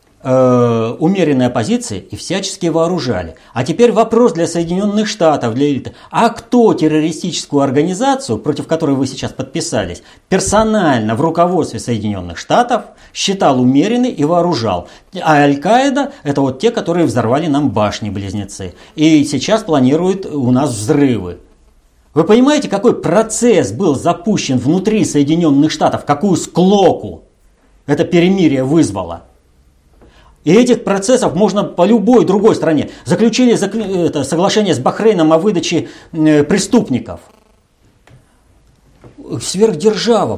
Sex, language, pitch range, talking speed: male, Russian, 125-205 Hz, 115 wpm